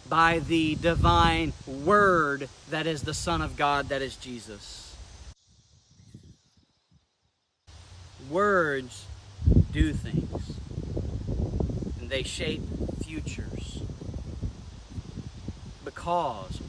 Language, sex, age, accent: English, male, 50-69, American